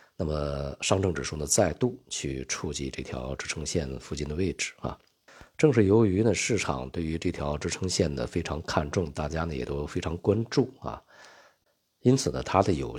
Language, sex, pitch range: Chinese, male, 70-90 Hz